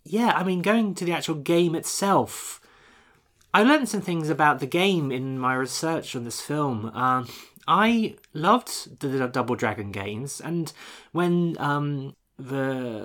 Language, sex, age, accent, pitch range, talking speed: English, male, 30-49, British, 125-165 Hz, 155 wpm